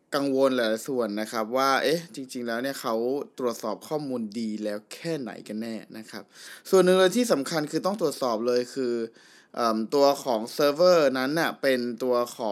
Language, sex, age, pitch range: Thai, male, 20-39, 125-165 Hz